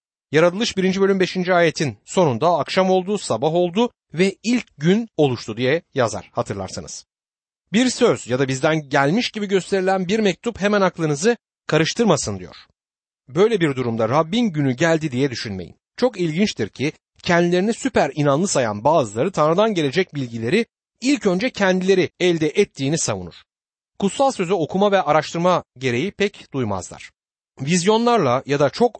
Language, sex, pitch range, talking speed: Turkish, male, 140-205 Hz, 140 wpm